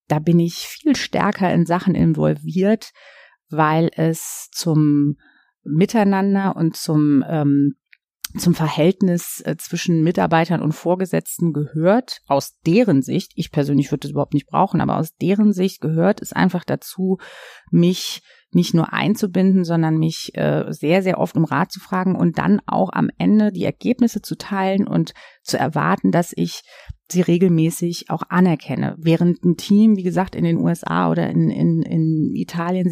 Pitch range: 155-190 Hz